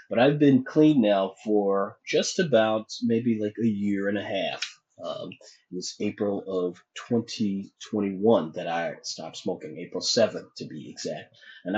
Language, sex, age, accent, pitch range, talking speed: English, male, 30-49, American, 100-130 Hz, 160 wpm